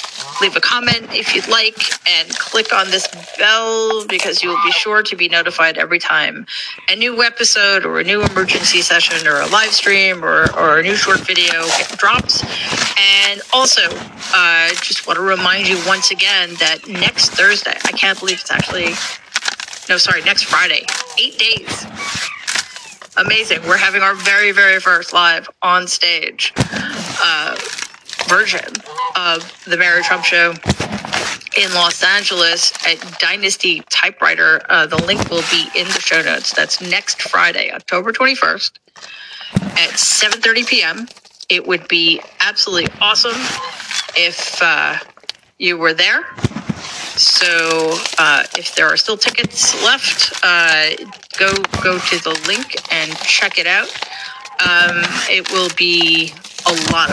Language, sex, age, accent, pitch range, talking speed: English, female, 30-49, American, 175-220 Hz, 145 wpm